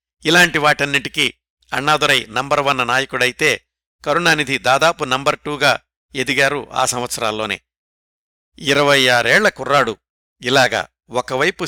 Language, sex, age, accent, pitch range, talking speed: Telugu, male, 60-79, native, 115-155 Hz, 90 wpm